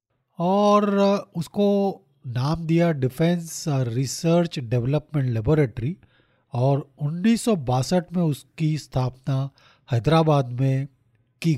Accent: native